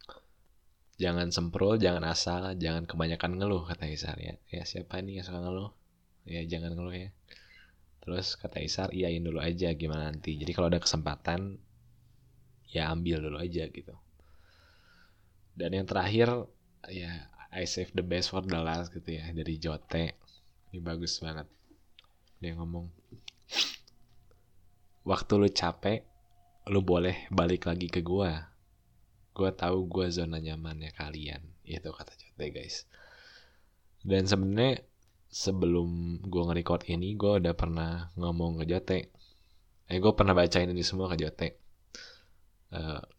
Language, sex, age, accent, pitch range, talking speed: Indonesian, male, 20-39, native, 80-95 Hz, 135 wpm